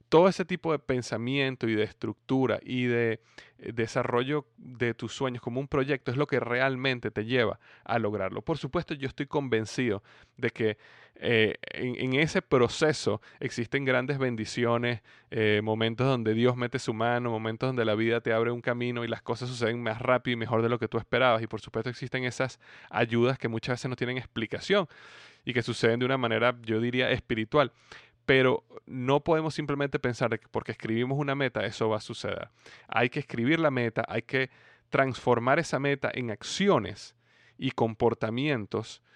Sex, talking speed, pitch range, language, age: male, 180 wpm, 115-135 Hz, Spanish, 20-39